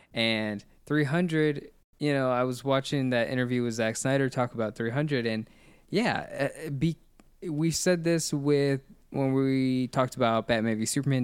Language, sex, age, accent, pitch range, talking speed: English, male, 20-39, American, 110-130 Hz, 150 wpm